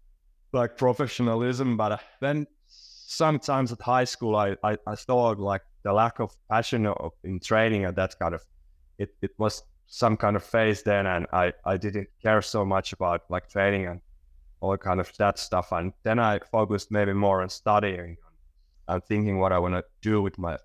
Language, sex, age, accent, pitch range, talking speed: English, male, 20-39, Finnish, 95-110 Hz, 190 wpm